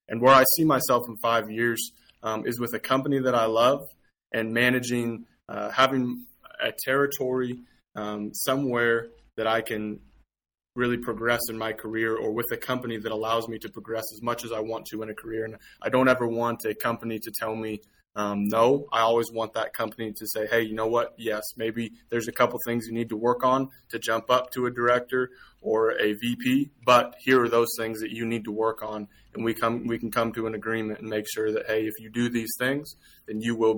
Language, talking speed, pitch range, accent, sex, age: English, 225 wpm, 110-120 Hz, American, male, 20-39